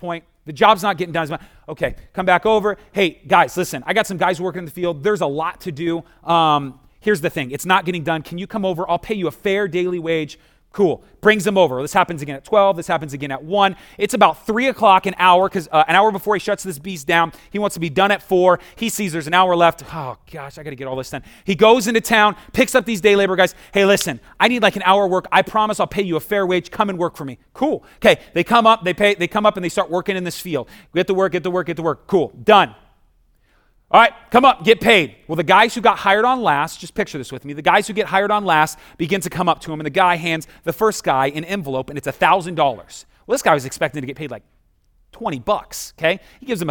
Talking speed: 280 wpm